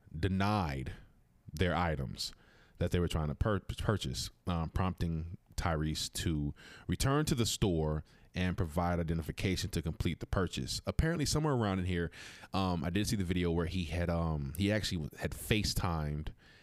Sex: male